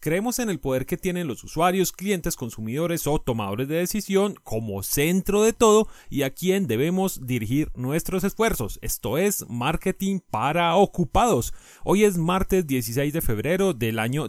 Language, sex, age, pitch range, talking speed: Spanish, male, 30-49, 125-185 Hz, 160 wpm